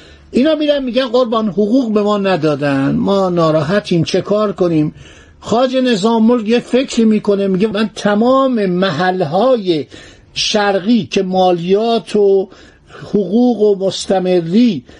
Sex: male